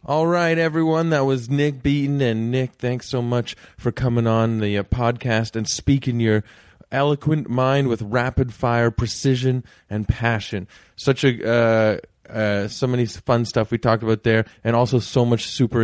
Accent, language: American, English